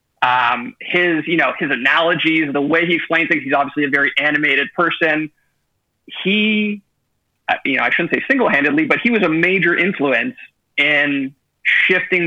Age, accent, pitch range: 30-49, American, 130-170 Hz